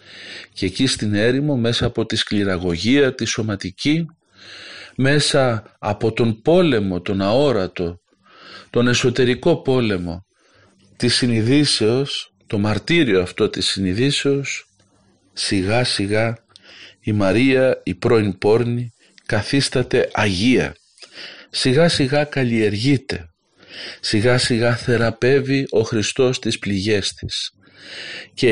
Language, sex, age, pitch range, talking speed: Greek, male, 50-69, 105-130 Hz, 100 wpm